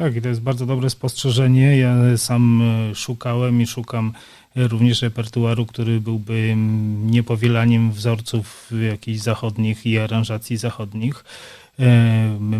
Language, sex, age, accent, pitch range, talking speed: Polish, male, 30-49, native, 110-125 Hz, 110 wpm